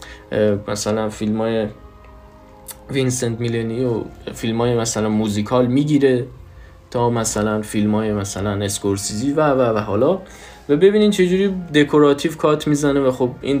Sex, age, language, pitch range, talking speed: male, 20-39, Persian, 110-145 Hz, 120 wpm